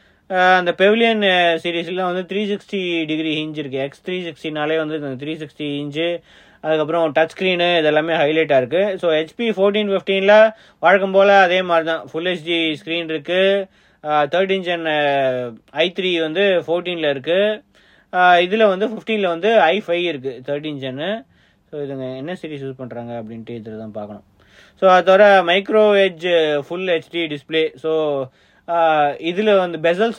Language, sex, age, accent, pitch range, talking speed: English, male, 30-49, Indian, 150-190 Hz, 95 wpm